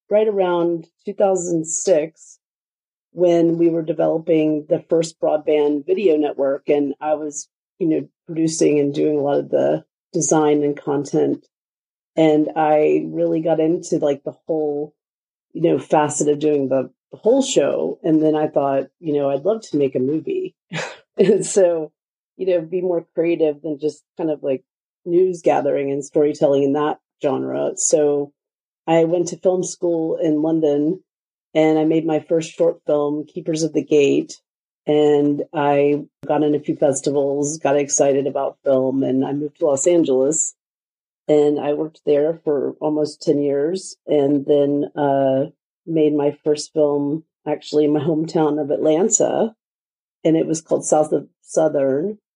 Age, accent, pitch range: 40-59, American, 145-170 Hz